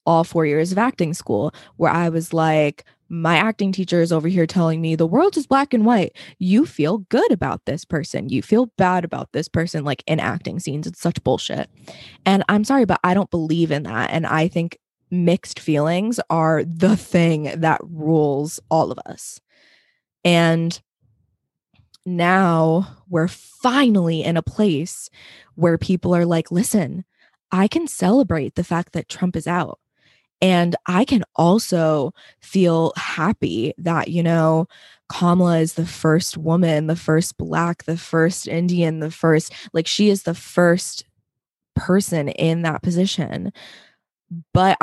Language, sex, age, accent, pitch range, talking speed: English, female, 20-39, American, 160-185 Hz, 160 wpm